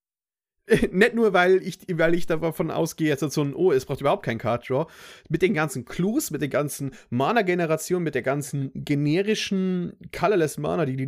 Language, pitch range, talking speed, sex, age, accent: German, 120-160 Hz, 200 wpm, male, 30-49, German